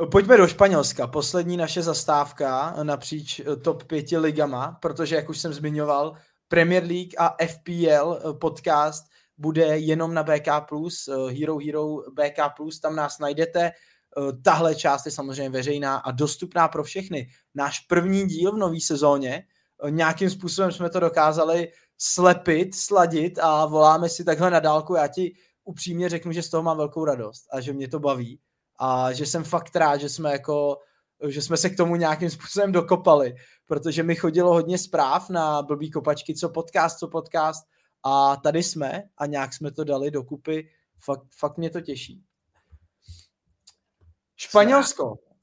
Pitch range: 145-180 Hz